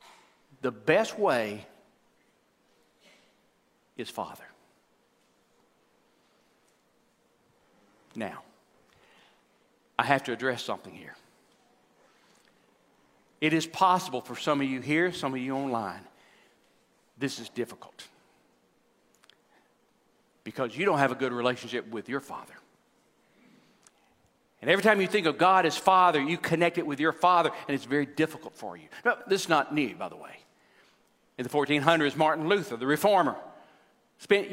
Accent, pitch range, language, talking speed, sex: American, 155-215 Hz, English, 125 wpm, male